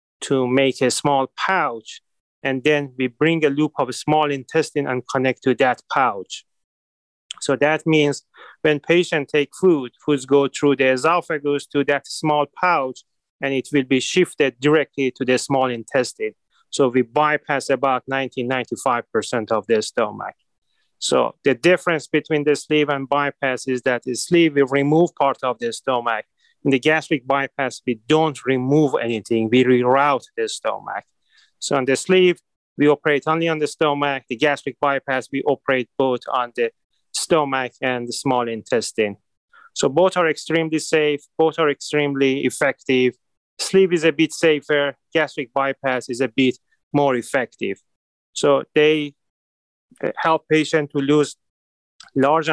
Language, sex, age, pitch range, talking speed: English, male, 30-49, 130-155 Hz, 155 wpm